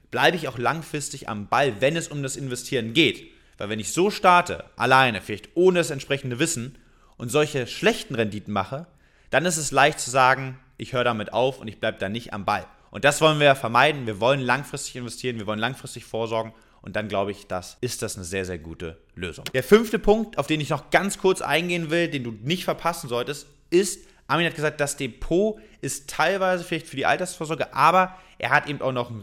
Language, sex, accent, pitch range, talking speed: German, male, German, 115-155 Hz, 215 wpm